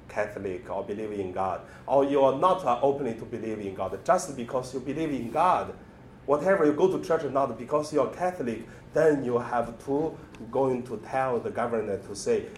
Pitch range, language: 95-145 Hz, Chinese